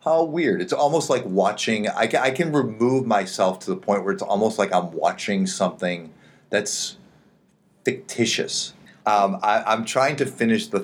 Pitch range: 95-150 Hz